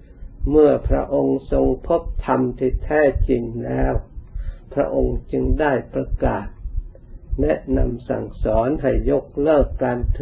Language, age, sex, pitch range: Thai, 60-79, male, 80-130 Hz